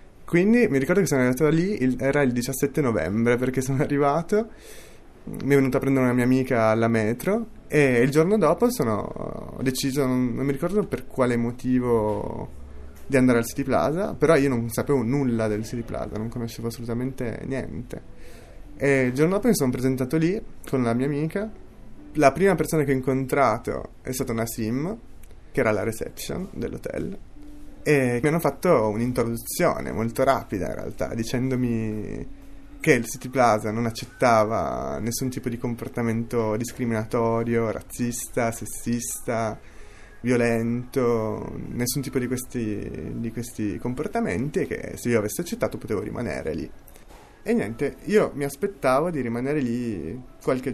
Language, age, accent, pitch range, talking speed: Italian, 30-49, native, 115-140 Hz, 150 wpm